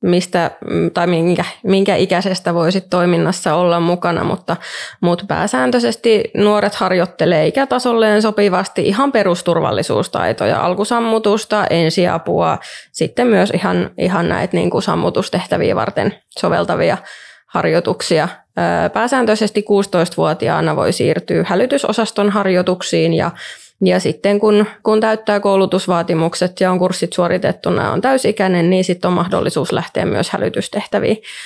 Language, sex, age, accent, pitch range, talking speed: Finnish, female, 20-39, native, 180-210 Hz, 105 wpm